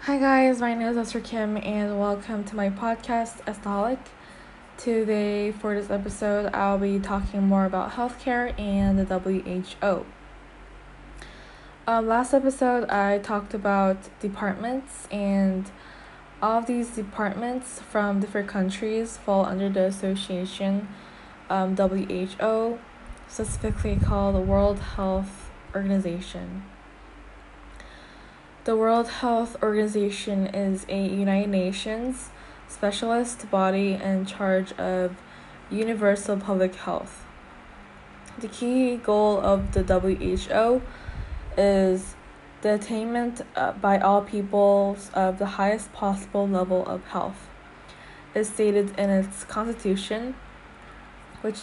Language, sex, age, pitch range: Korean, female, 10-29, 190-220 Hz